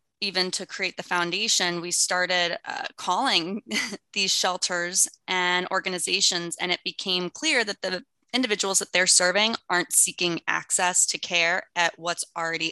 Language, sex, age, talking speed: English, female, 20-39, 145 wpm